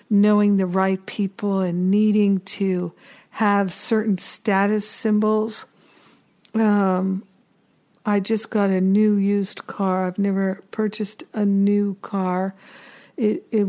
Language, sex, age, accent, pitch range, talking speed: English, female, 60-79, American, 190-215 Hz, 120 wpm